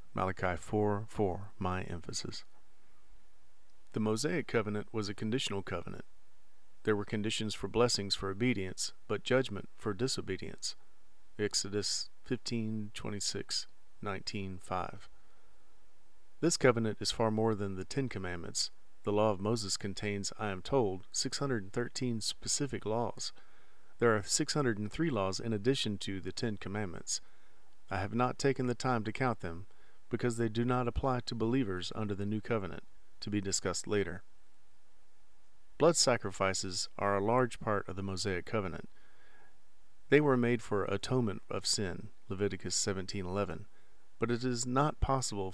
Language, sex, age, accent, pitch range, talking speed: English, male, 40-59, American, 95-120 Hz, 135 wpm